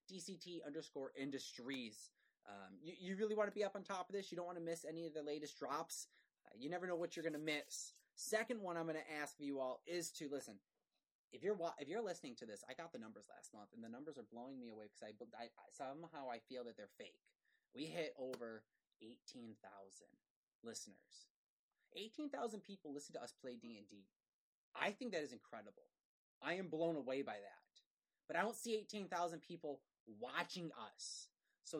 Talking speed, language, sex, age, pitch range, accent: 210 wpm, English, male, 20-39, 150-220 Hz, American